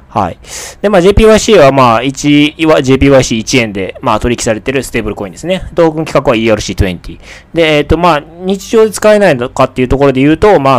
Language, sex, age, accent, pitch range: Japanese, male, 20-39, native, 105-150 Hz